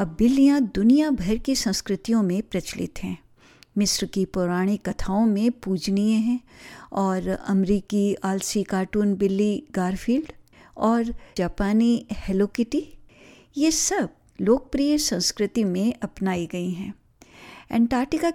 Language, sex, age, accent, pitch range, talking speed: Hindi, female, 50-69, native, 190-240 Hz, 115 wpm